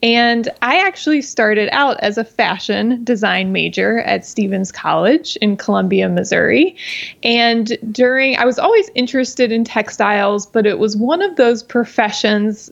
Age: 20-39